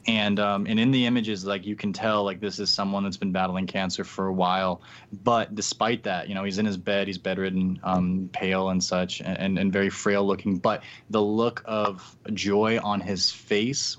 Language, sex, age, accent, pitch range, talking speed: English, male, 20-39, American, 100-115 Hz, 215 wpm